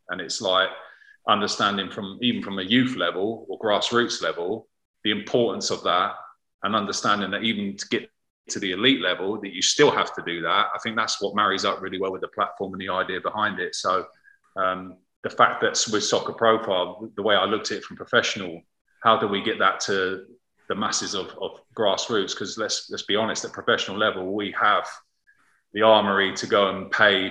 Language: English